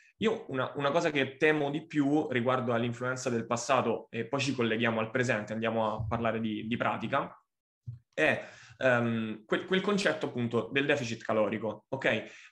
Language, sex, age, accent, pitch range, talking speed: Italian, male, 20-39, native, 115-130 Hz, 165 wpm